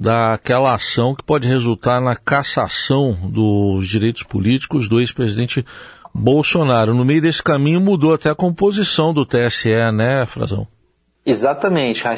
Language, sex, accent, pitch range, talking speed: Portuguese, male, Brazilian, 115-140 Hz, 130 wpm